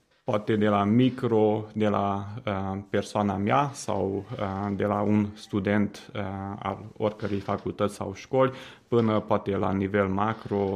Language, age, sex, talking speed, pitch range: Romanian, 20-39, male, 145 wpm, 100-110 Hz